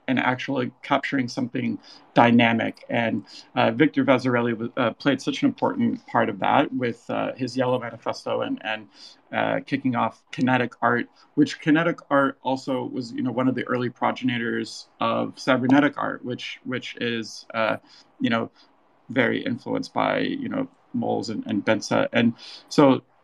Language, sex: English, male